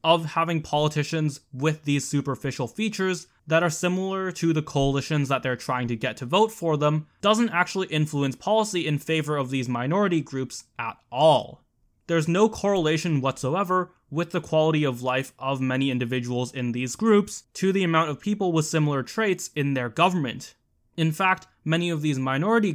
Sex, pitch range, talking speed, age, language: male, 140-180 Hz, 175 wpm, 10-29, English